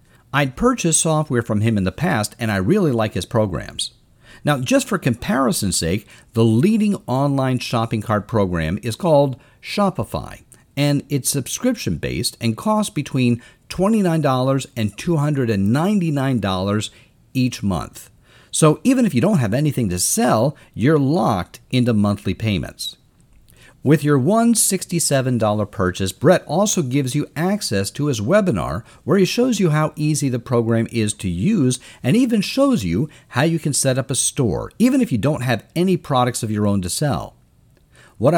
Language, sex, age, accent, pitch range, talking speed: English, male, 50-69, American, 110-155 Hz, 160 wpm